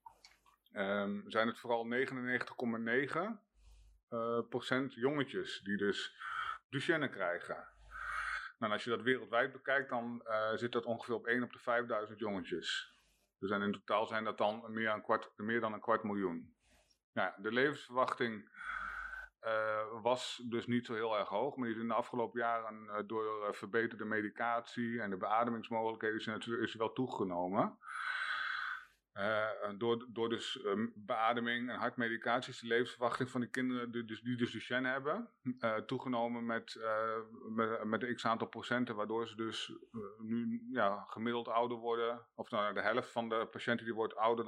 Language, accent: Dutch, Dutch